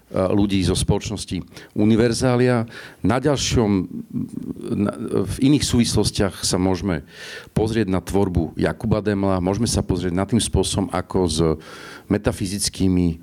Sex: male